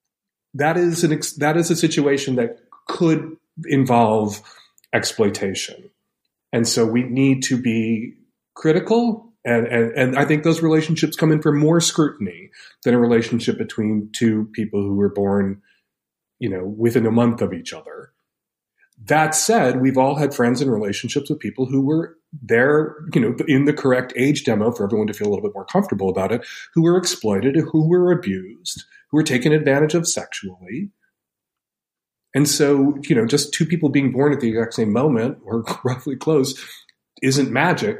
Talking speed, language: 170 wpm, English